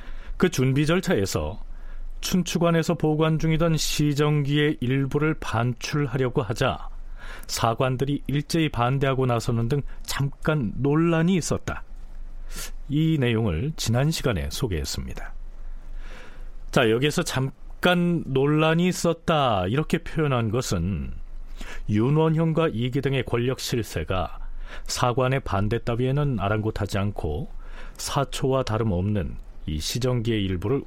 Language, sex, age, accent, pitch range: Korean, male, 40-59, native, 105-155 Hz